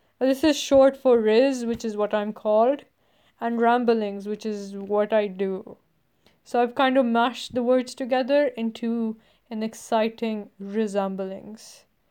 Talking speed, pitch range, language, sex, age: 145 wpm, 215-250 Hz, English, female, 10-29